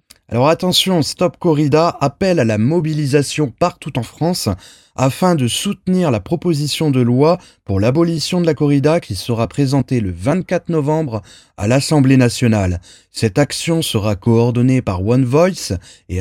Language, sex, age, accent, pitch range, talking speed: French, male, 30-49, French, 115-170 Hz, 150 wpm